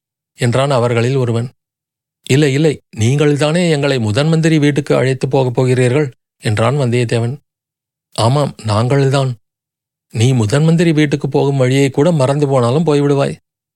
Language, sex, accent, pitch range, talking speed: Tamil, male, native, 120-145 Hz, 110 wpm